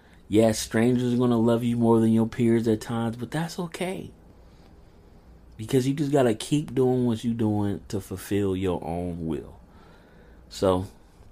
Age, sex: 30-49, male